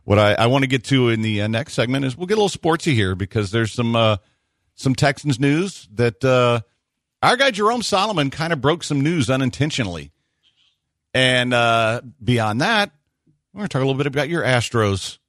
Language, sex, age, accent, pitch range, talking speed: English, male, 50-69, American, 100-135 Hz, 205 wpm